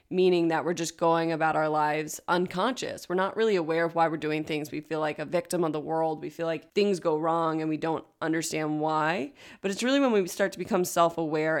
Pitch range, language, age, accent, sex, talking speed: 165-195 Hz, English, 20-39, American, female, 240 wpm